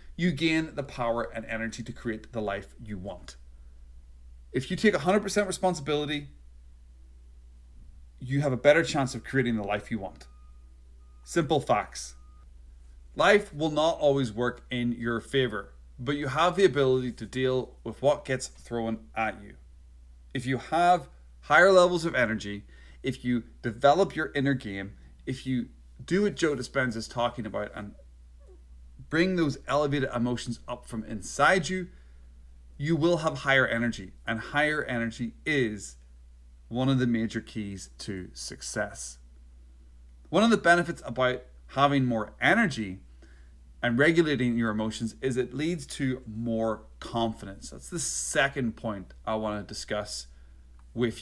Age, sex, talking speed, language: 30-49, male, 145 wpm, English